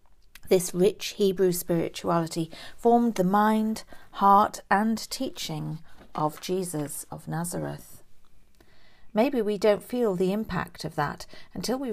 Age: 40-59